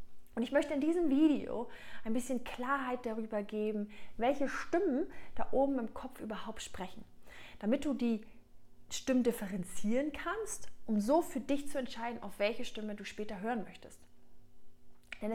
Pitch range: 205-255 Hz